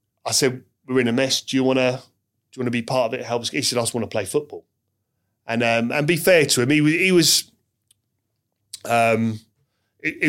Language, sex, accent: English, male, British